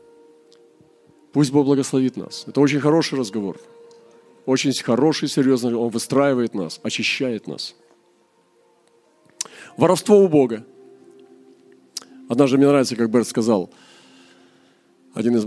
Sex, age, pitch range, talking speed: male, 40-59, 125-175 Hz, 110 wpm